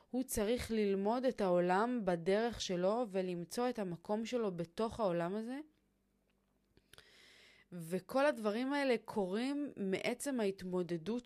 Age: 20-39